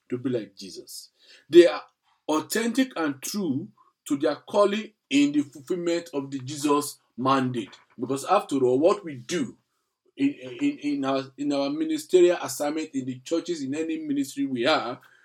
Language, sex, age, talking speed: English, male, 50-69, 160 wpm